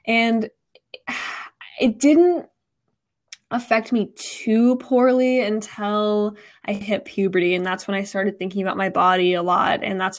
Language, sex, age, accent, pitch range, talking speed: English, female, 10-29, American, 190-225 Hz, 140 wpm